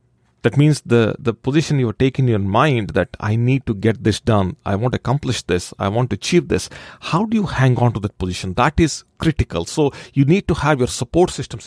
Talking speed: 240 wpm